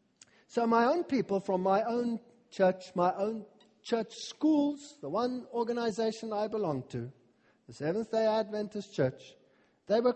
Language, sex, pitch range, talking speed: English, male, 195-260 Hz, 140 wpm